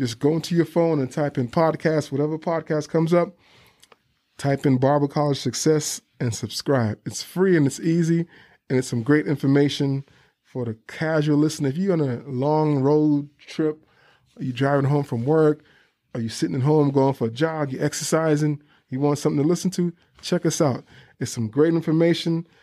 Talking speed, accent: 185 wpm, American